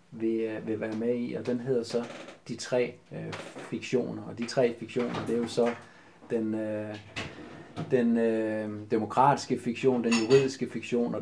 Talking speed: 160 wpm